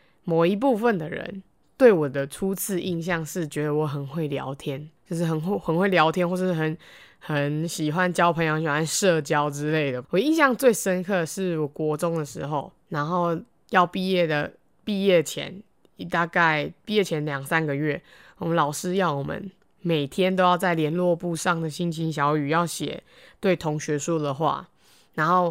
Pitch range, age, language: 150-180 Hz, 20-39, Chinese